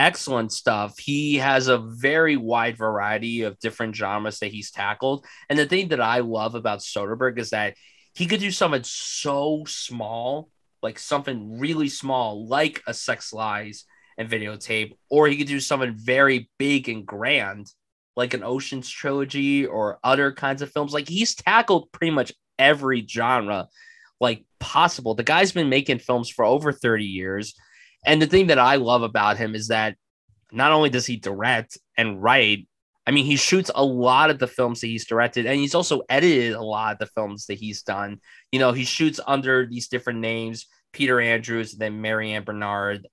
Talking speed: 180 wpm